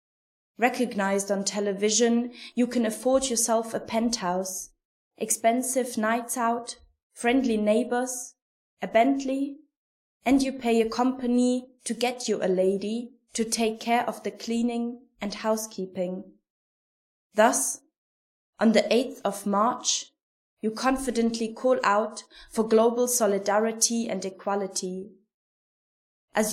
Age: 20-39